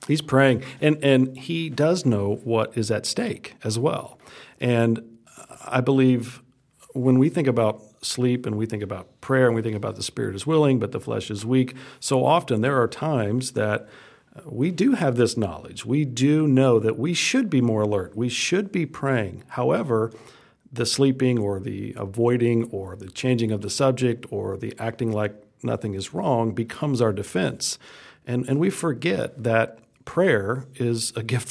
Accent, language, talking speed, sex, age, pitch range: American, English, 180 wpm, male, 50-69, 110-135 Hz